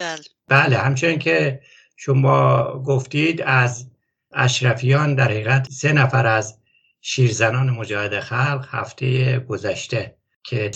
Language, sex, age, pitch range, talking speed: English, male, 60-79, 115-135 Hz, 100 wpm